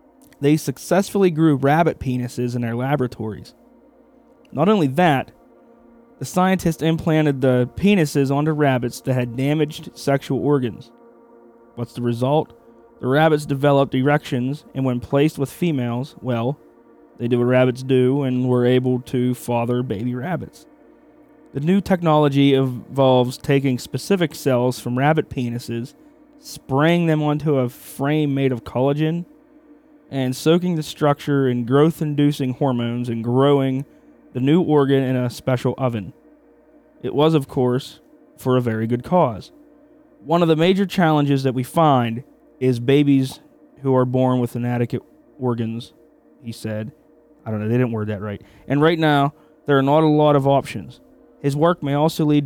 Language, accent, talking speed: English, American, 150 wpm